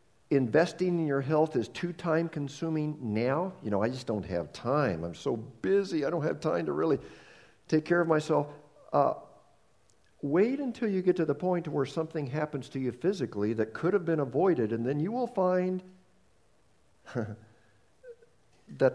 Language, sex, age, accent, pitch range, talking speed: English, male, 50-69, American, 140-190 Hz, 170 wpm